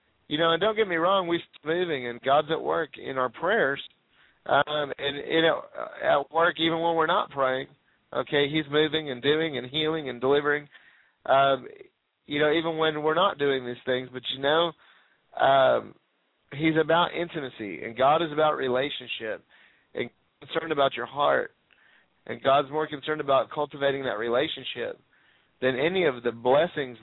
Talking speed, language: 170 wpm, English